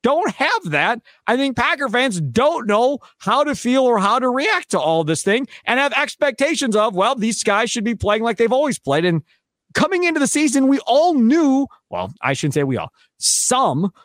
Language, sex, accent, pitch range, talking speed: English, male, American, 180-260 Hz, 210 wpm